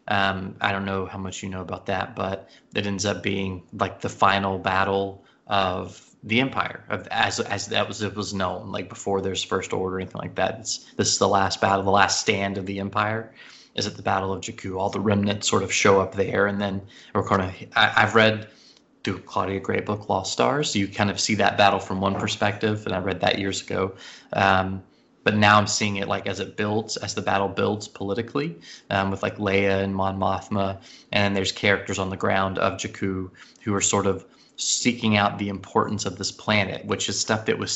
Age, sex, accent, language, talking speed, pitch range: 20-39, male, American, English, 225 wpm, 95-105 Hz